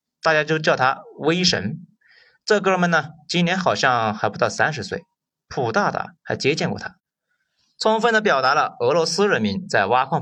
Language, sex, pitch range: Chinese, male, 155-210 Hz